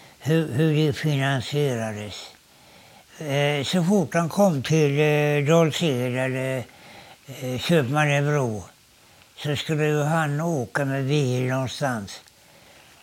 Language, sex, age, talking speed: Swedish, male, 60-79, 100 wpm